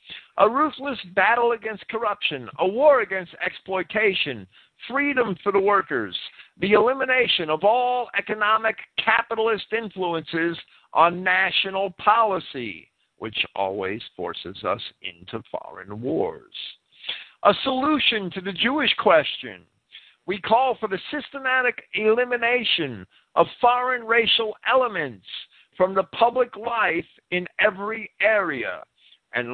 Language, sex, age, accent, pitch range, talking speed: English, male, 50-69, American, 135-215 Hz, 110 wpm